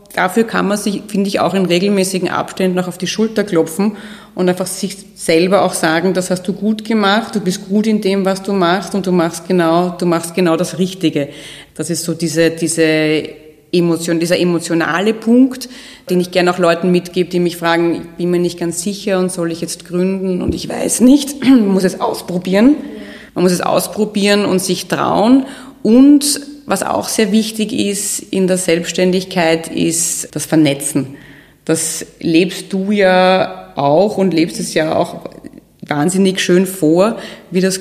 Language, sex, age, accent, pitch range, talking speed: German, female, 30-49, German, 165-195 Hz, 180 wpm